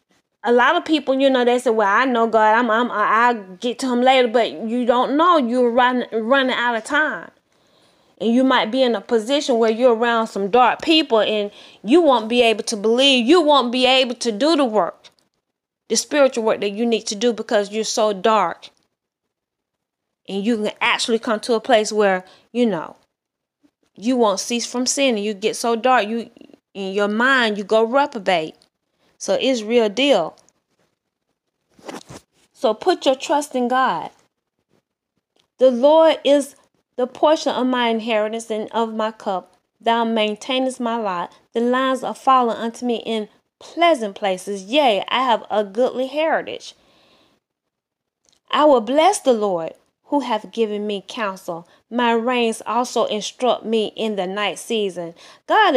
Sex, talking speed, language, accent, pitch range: female, 170 wpm, English, American, 220-260 Hz